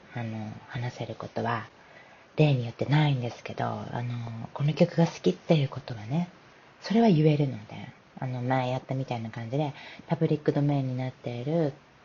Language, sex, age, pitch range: Japanese, female, 30-49, 120-155 Hz